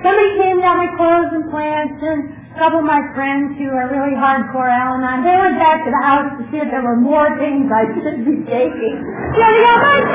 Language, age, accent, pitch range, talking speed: English, 40-59, American, 270-380 Hz, 230 wpm